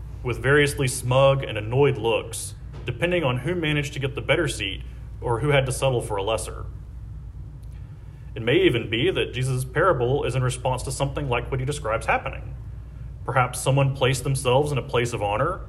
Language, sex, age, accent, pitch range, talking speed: English, male, 40-59, American, 115-140 Hz, 185 wpm